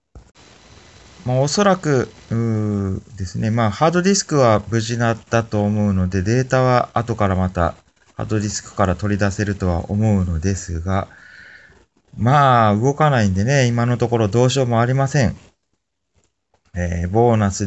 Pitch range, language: 95-130 Hz, Japanese